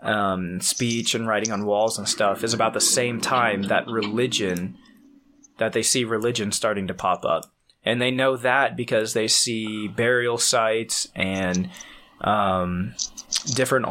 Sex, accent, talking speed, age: male, American, 150 wpm, 20-39